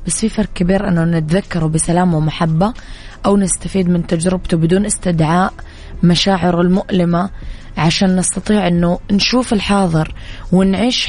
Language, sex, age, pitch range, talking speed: Arabic, female, 20-39, 170-195 Hz, 120 wpm